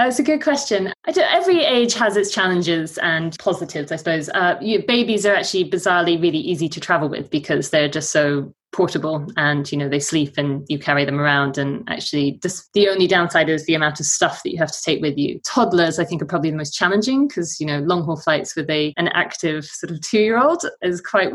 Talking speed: 230 wpm